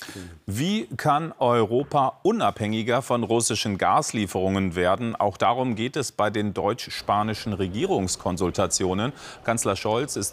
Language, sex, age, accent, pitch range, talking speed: German, male, 40-59, German, 100-120 Hz, 110 wpm